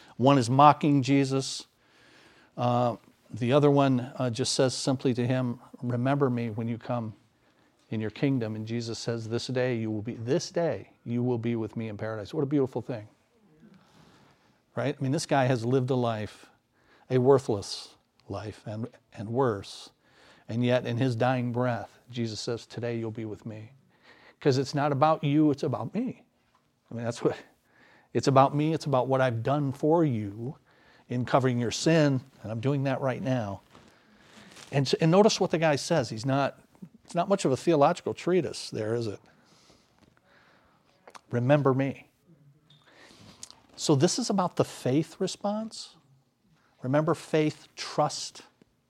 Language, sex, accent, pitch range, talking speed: English, male, American, 120-150 Hz, 165 wpm